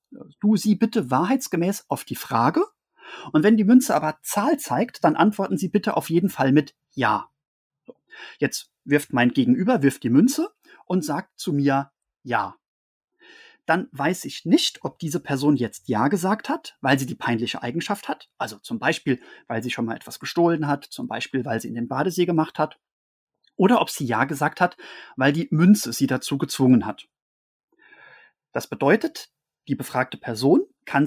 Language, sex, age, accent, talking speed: German, male, 30-49, German, 175 wpm